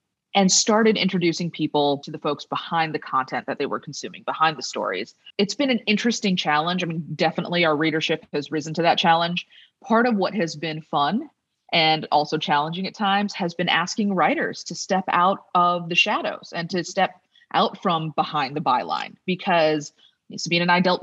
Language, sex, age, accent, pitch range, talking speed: English, female, 30-49, American, 155-190 Hz, 190 wpm